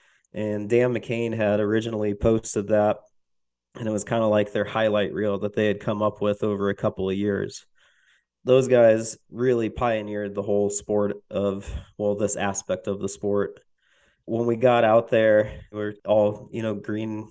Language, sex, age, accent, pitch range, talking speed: English, male, 20-39, American, 105-115 Hz, 175 wpm